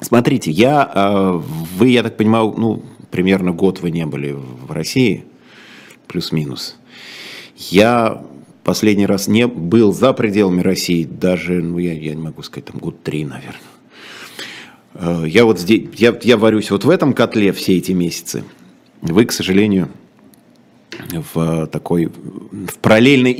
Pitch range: 90-125 Hz